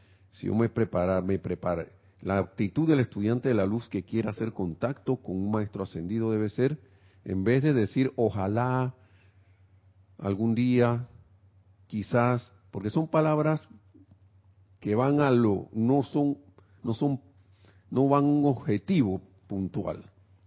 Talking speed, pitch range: 140 wpm, 95-120 Hz